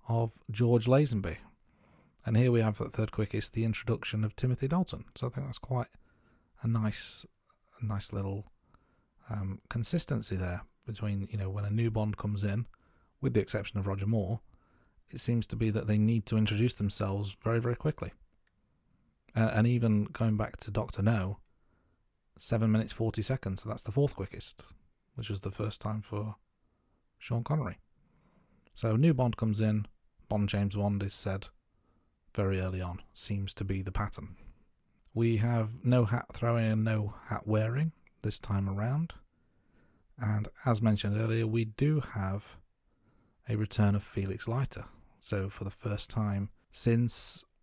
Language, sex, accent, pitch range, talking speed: English, male, British, 100-115 Hz, 165 wpm